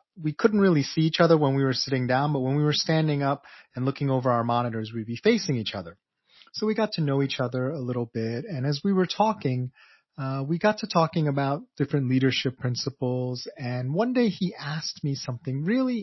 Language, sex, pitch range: English, male, 130-160 Hz